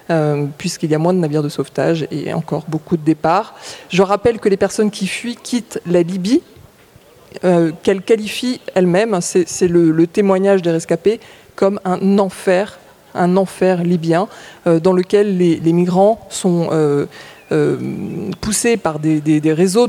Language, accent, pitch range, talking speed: French, French, 170-205 Hz, 170 wpm